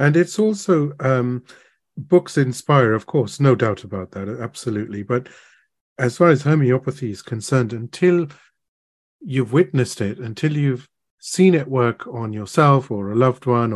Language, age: English, 40-59